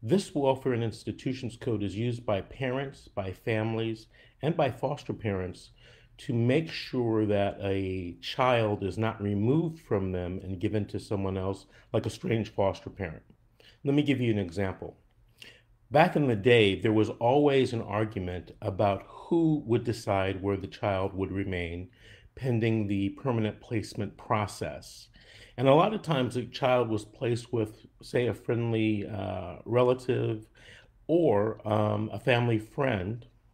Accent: American